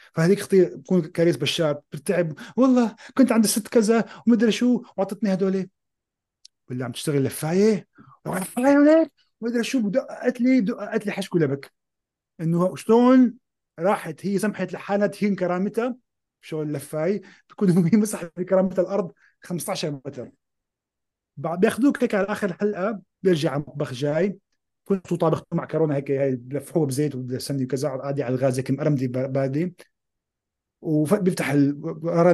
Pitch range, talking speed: 145-205 Hz, 130 wpm